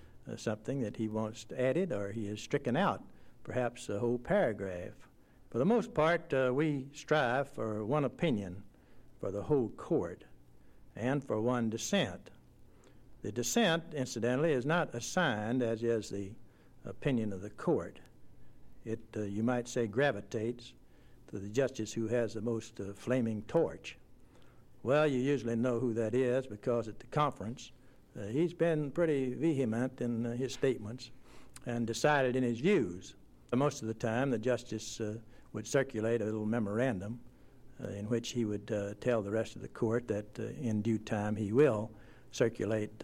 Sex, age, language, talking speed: male, 60-79, English, 165 wpm